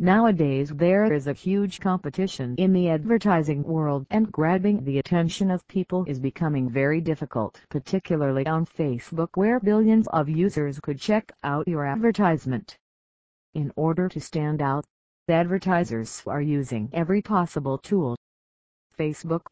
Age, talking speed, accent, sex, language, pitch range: 50-69, 135 wpm, American, female, English, 140-190 Hz